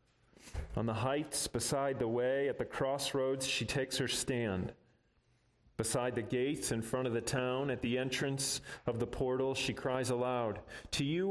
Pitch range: 115-140 Hz